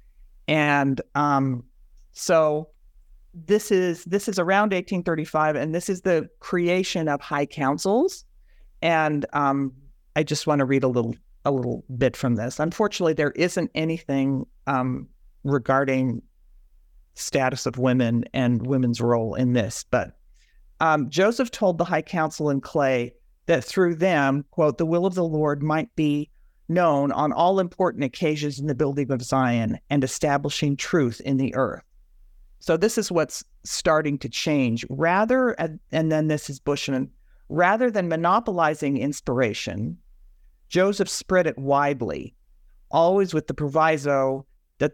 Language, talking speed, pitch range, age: English, 145 wpm, 130-165 Hz, 50-69